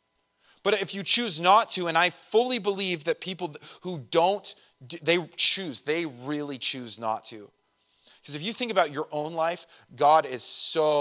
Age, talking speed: 30-49, 175 wpm